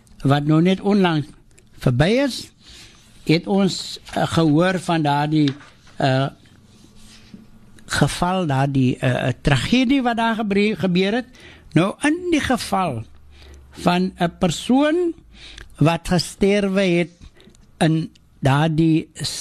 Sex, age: male, 60-79